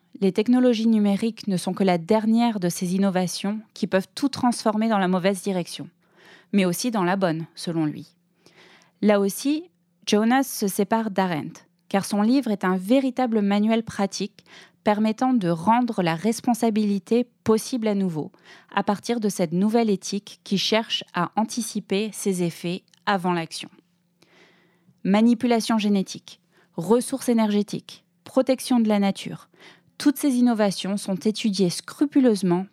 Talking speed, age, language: 140 wpm, 20-39, French